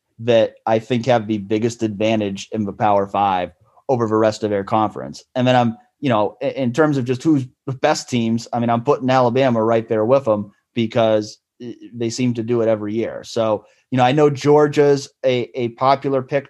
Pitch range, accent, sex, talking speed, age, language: 115-140 Hz, American, male, 210 wpm, 30-49, English